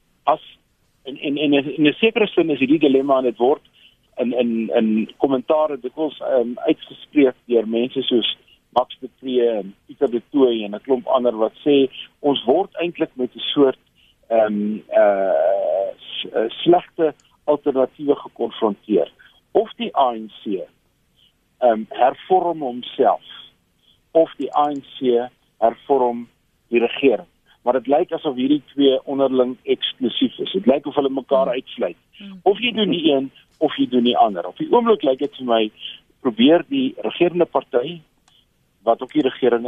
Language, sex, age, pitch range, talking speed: Dutch, male, 50-69, 120-155 Hz, 155 wpm